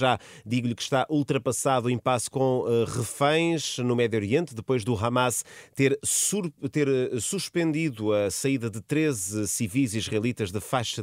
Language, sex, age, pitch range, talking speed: Portuguese, male, 30-49, 105-135 Hz, 145 wpm